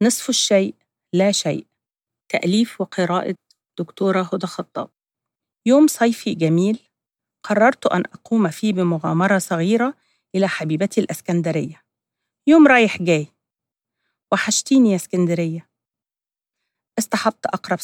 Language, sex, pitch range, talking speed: Arabic, female, 170-215 Hz, 95 wpm